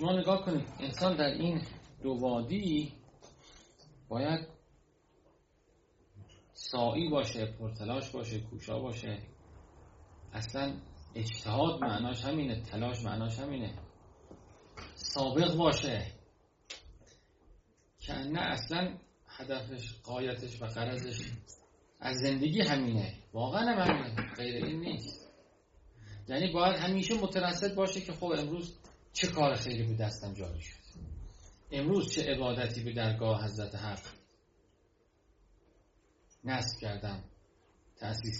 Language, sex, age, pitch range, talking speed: Persian, male, 30-49, 100-140 Hz, 100 wpm